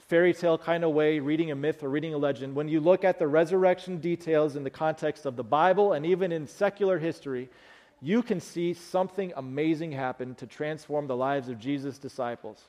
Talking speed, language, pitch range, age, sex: 205 wpm, English, 130-170 Hz, 40-59, male